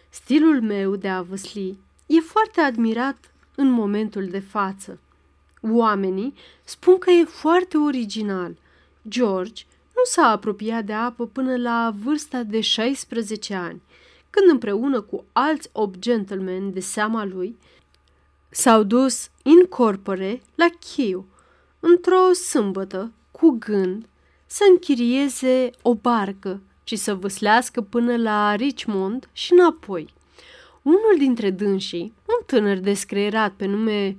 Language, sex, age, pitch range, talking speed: Romanian, female, 30-49, 195-265 Hz, 120 wpm